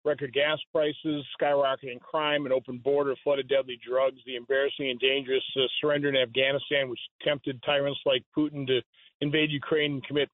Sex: male